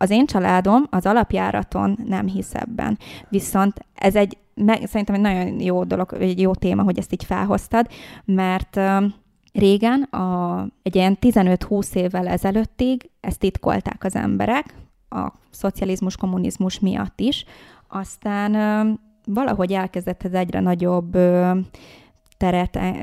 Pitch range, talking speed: 185-205 Hz, 115 wpm